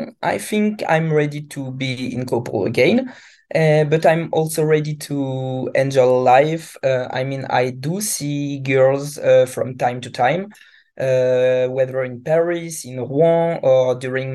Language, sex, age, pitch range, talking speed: English, male, 20-39, 130-155 Hz, 155 wpm